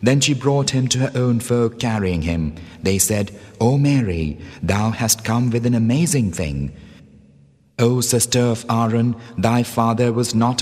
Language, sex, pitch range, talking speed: English, male, 95-120 Hz, 165 wpm